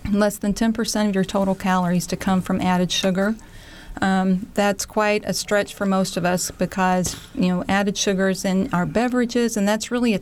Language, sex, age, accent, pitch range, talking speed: English, female, 40-59, American, 185-205 Hz, 195 wpm